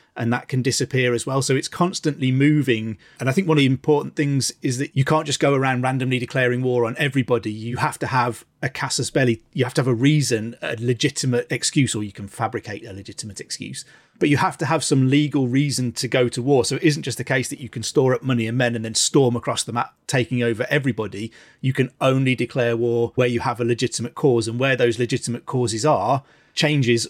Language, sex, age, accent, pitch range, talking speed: English, male, 30-49, British, 120-140 Hz, 235 wpm